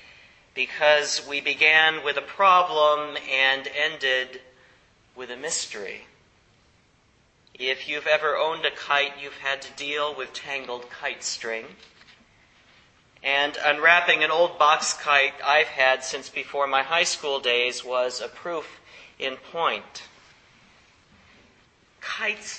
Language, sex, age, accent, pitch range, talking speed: English, male, 40-59, American, 130-155 Hz, 120 wpm